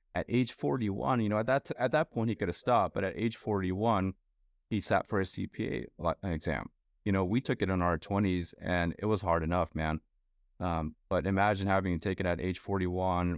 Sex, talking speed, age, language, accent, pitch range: male, 210 wpm, 30-49, English, American, 90-105 Hz